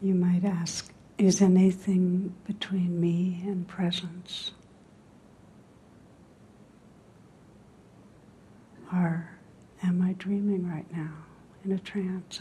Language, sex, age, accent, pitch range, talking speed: English, female, 60-79, American, 160-185 Hz, 85 wpm